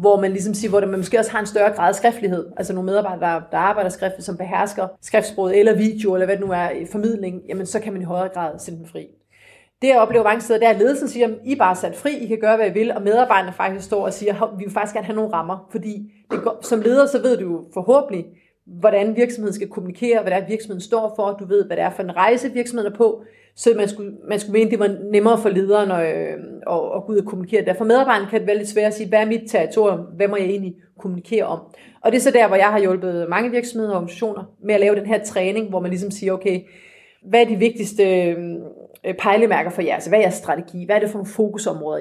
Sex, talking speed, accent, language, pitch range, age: female, 265 wpm, native, Danish, 190-220 Hz, 30-49